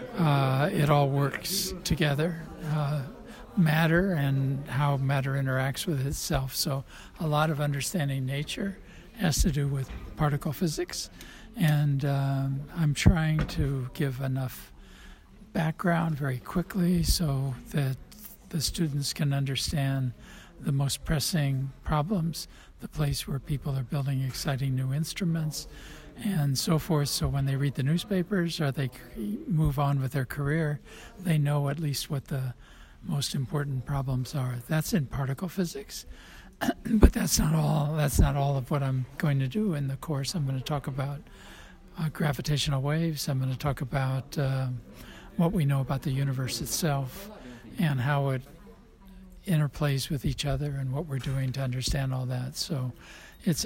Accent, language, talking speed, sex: American, Italian, 150 wpm, male